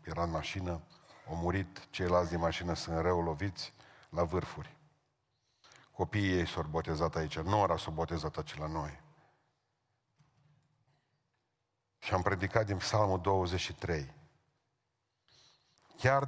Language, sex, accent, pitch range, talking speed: Romanian, male, native, 90-120 Hz, 110 wpm